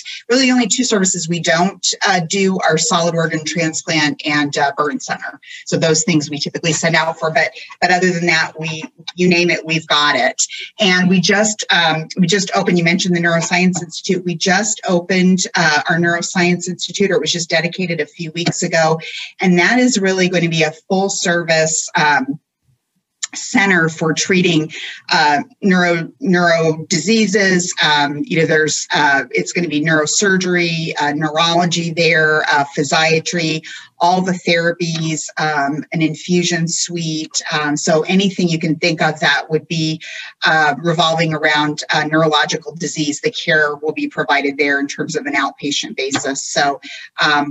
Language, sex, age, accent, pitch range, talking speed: English, female, 30-49, American, 155-180 Hz, 170 wpm